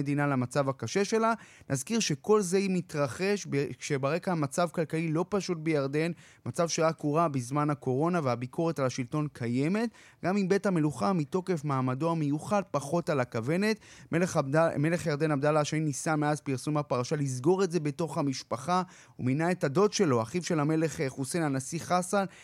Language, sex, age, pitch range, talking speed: Hebrew, male, 30-49, 145-185 Hz, 150 wpm